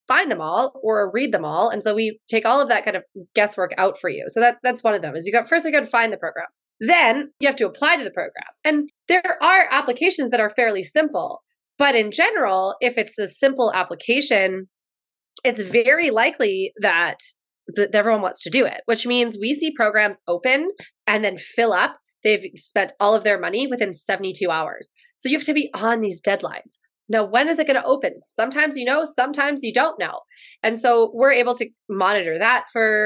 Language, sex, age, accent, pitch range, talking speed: English, female, 20-39, American, 200-260 Hz, 215 wpm